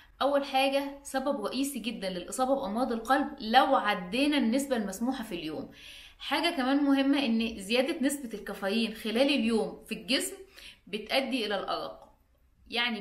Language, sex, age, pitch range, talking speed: Arabic, female, 20-39, 210-270 Hz, 135 wpm